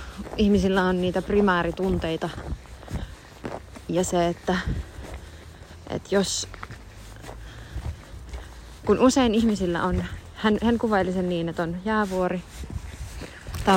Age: 20-39